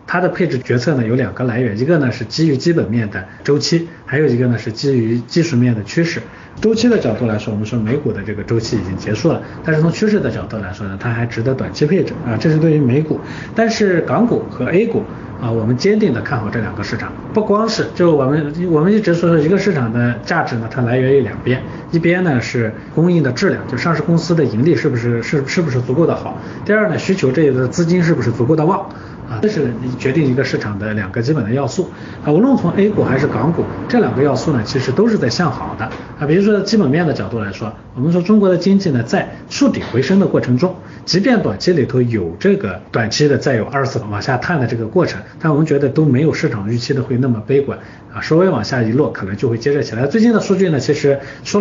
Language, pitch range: Chinese, 120-165 Hz